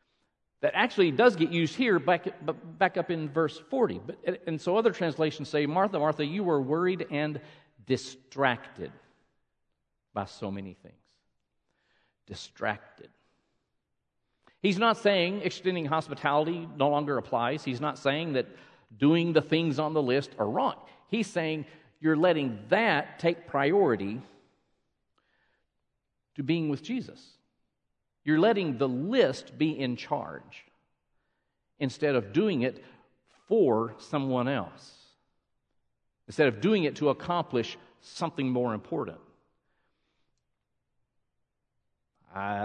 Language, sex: English, male